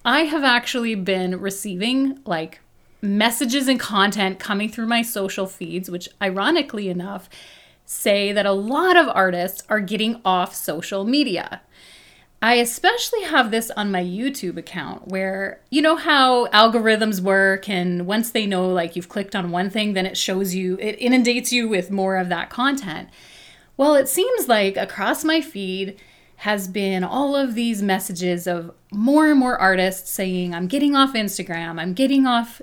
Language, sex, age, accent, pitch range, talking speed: English, female, 30-49, American, 185-255 Hz, 165 wpm